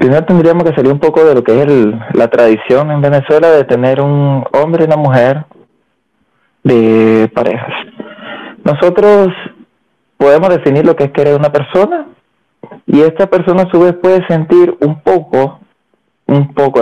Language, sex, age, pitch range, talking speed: Spanish, male, 30-49, 135-170 Hz, 155 wpm